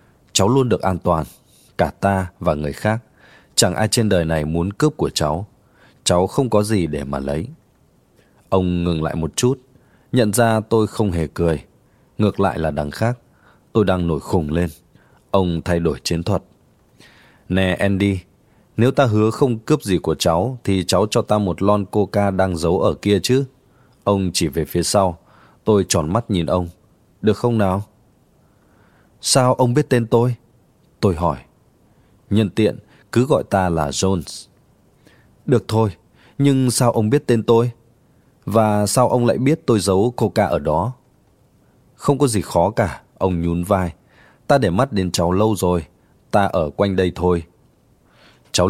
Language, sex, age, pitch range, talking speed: Vietnamese, male, 20-39, 90-120 Hz, 175 wpm